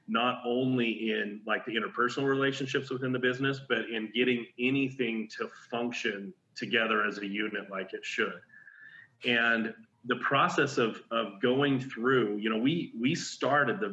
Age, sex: 30-49, male